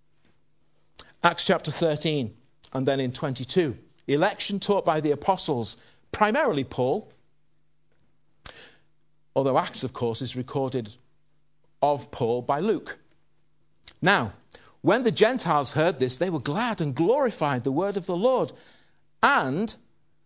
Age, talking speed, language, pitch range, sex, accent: 50-69, 120 wpm, English, 145-185 Hz, male, British